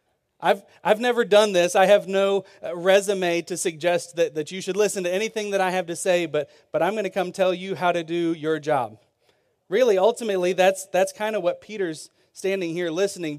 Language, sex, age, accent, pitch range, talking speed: English, male, 30-49, American, 160-195 Hz, 210 wpm